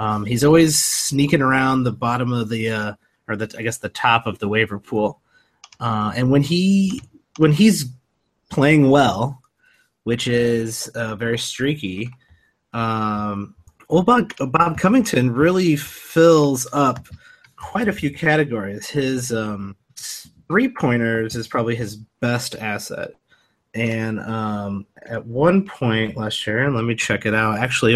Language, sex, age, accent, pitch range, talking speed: English, male, 30-49, American, 105-130 Hz, 145 wpm